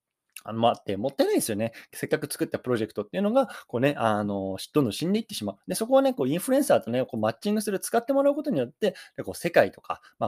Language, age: Japanese, 20-39